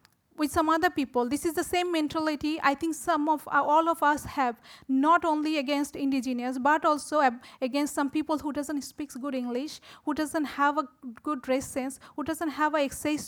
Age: 40-59